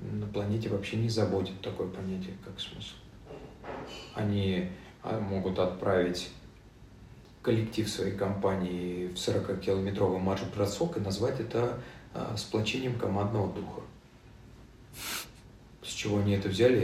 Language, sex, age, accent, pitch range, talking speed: Russian, male, 40-59, native, 95-115 Hz, 105 wpm